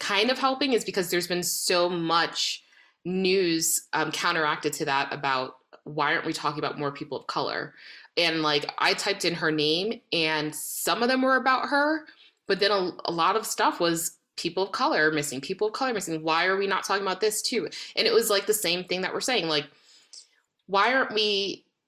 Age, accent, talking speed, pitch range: 20-39, American, 210 wpm, 150-200 Hz